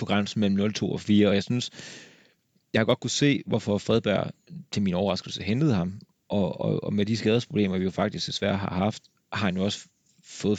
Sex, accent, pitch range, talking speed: male, native, 95-115 Hz, 215 wpm